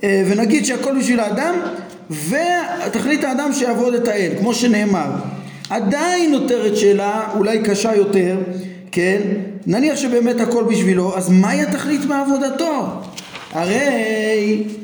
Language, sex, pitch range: Hebrew, male, 190-250 Hz